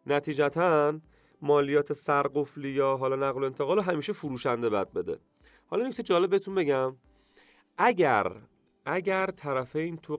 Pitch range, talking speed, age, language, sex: 140-175 Hz, 130 wpm, 30-49, Persian, male